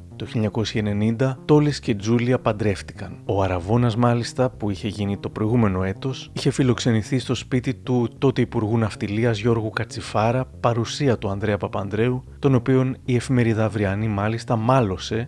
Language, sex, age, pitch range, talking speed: Greek, male, 30-49, 110-135 Hz, 140 wpm